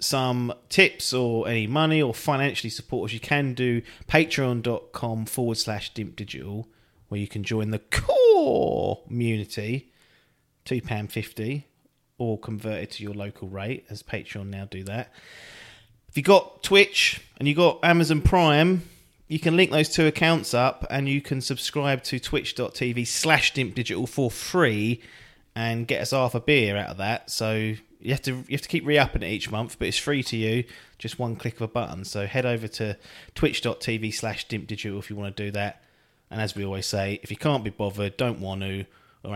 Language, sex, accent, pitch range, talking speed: English, male, British, 100-130 Hz, 185 wpm